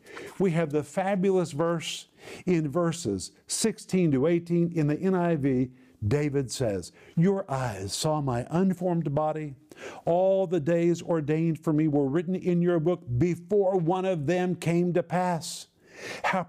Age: 50-69